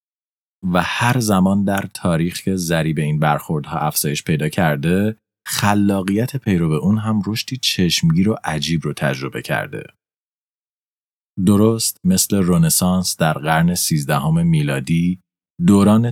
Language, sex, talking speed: Persian, male, 120 wpm